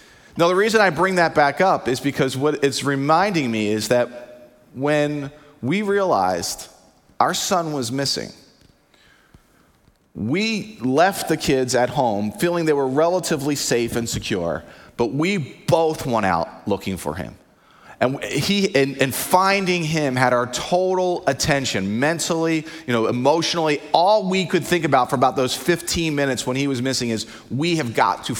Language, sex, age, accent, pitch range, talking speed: English, male, 30-49, American, 125-170 Hz, 165 wpm